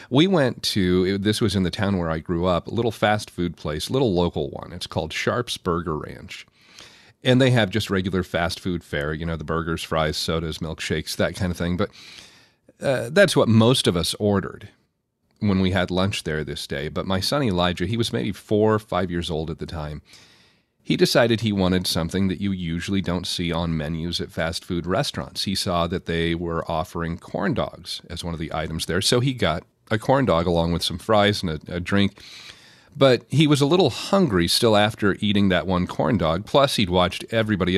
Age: 40-59